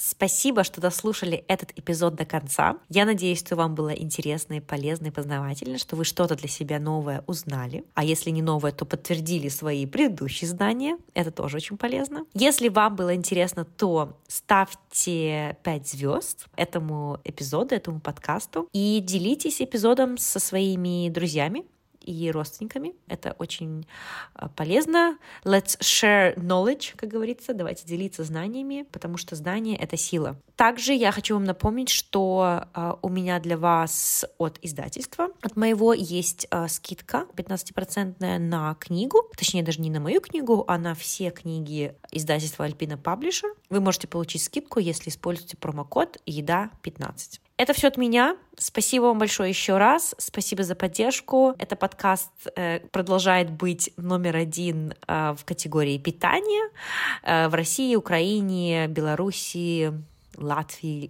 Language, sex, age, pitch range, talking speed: Russian, female, 20-39, 160-205 Hz, 140 wpm